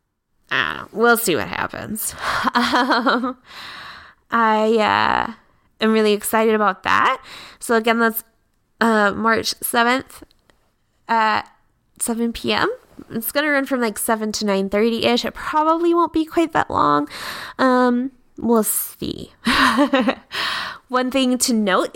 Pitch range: 190-240 Hz